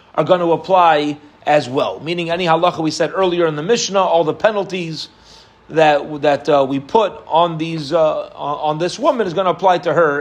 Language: English